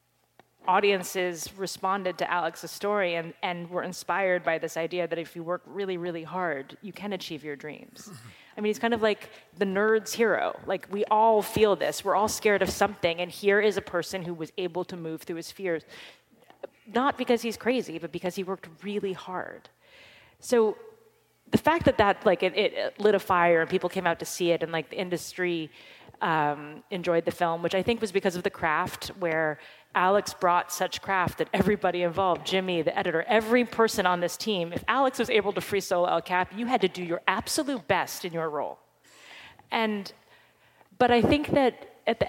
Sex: female